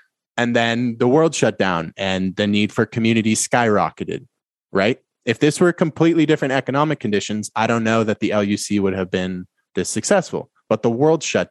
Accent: American